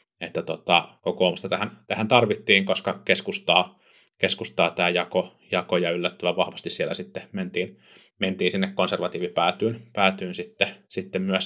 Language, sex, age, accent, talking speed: Finnish, male, 30-49, native, 125 wpm